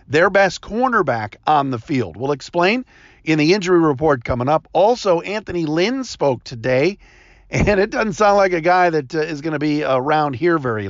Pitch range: 135-190 Hz